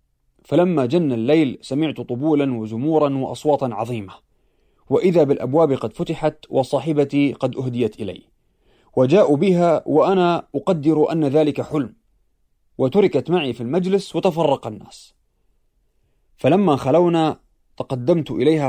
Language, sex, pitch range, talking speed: Arabic, male, 130-165 Hz, 105 wpm